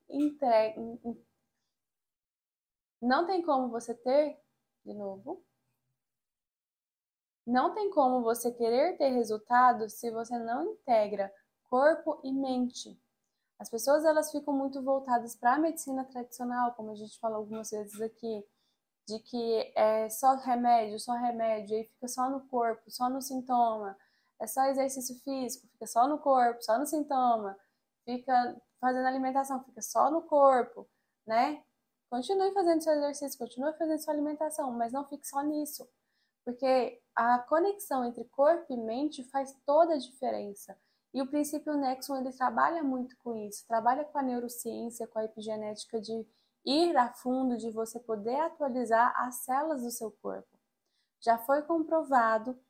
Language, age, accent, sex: Portuguese, 10-29, Brazilian, female